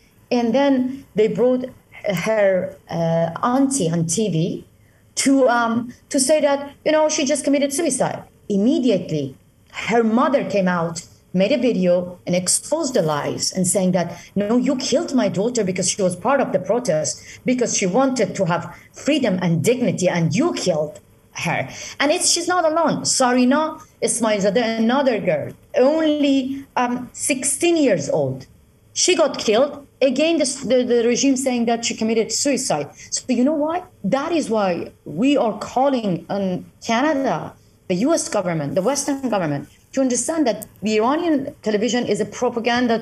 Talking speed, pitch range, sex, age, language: 160 wpm, 195-280 Hz, female, 30-49, English